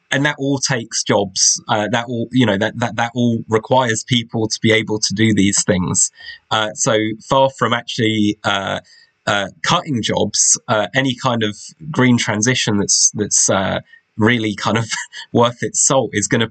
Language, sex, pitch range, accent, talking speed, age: English, male, 105-125 Hz, British, 180 wpm, 20-39